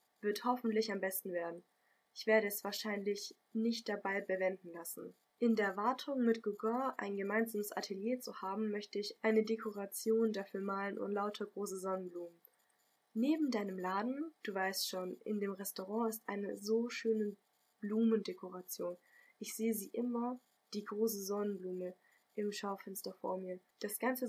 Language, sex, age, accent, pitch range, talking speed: German, female, 10-29, German, 195-225 Hz, 150 wpm